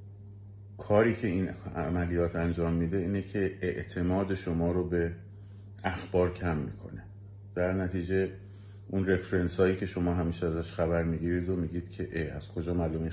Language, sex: Persian, male